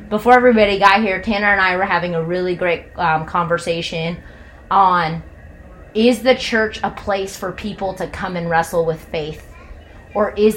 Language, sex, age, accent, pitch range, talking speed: English, female, 30-49, American, 165-205 Hz, 170 wpm